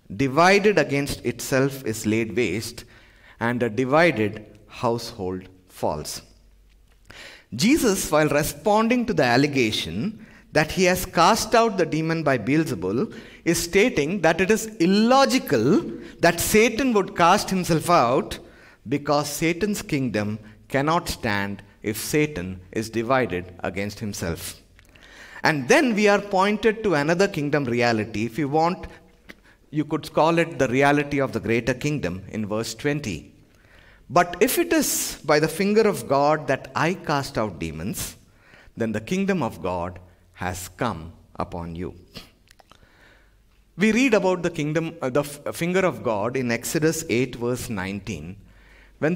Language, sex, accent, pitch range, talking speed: English, male, Indian, 110-170 Hz, 140 wpm